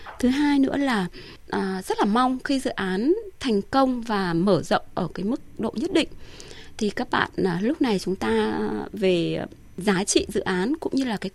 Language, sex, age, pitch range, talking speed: Vietnamese, female, 20-39, 190-255 Hz, 195 wpm